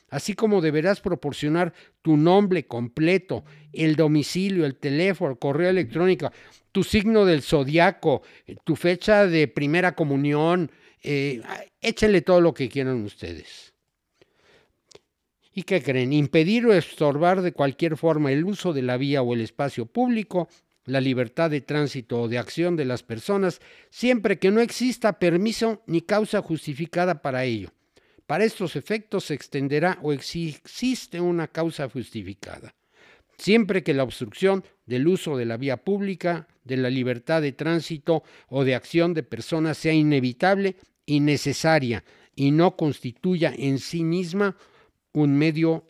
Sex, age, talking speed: male, 60-79, 145 wpm